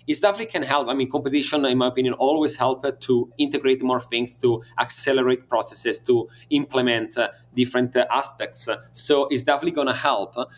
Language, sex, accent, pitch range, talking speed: English, male, Italian, 120-140 Hz, 180 wpm